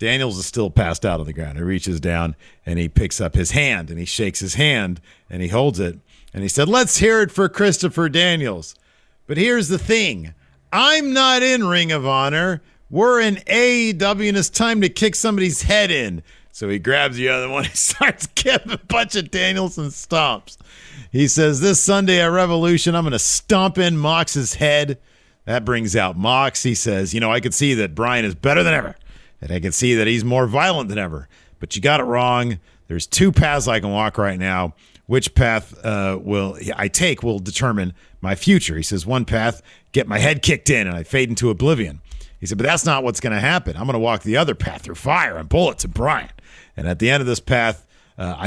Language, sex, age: English, male, 50-69